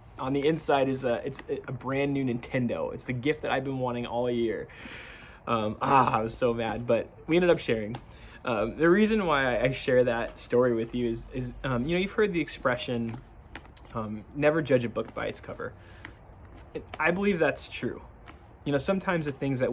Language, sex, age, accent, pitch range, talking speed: English, male, 20-39, American, 115-135 Hz, 205 wpm